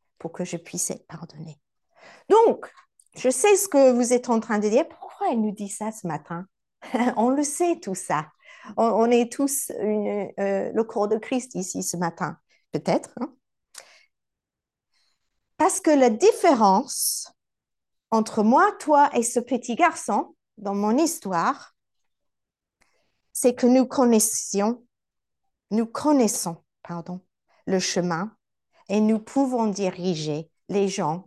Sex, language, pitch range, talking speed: female, French, 195-260 Hz, 140 wpm